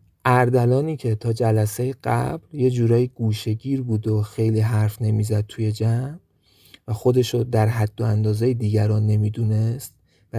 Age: 30-49